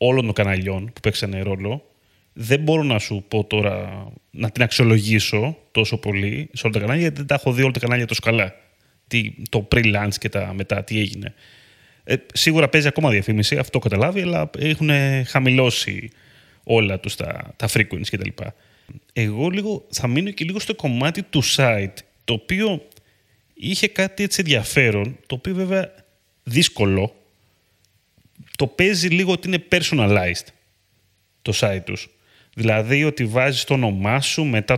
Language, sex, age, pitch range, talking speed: Greek, male, 30-49, 105-145 Hz, 155 wpm